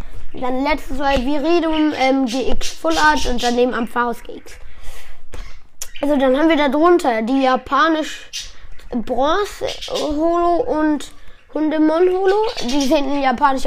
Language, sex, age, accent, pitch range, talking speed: German, female, 20-39, German, 255-315 Hz, 125 wpm